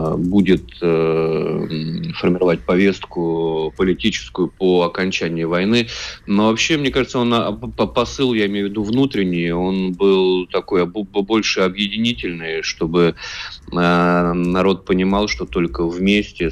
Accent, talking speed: native, 105 wpm